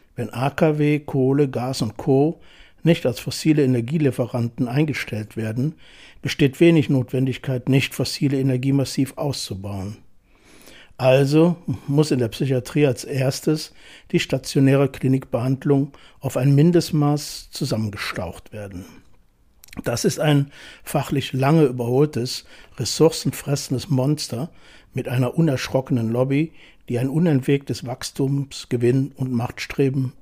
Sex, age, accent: male, 60-79, German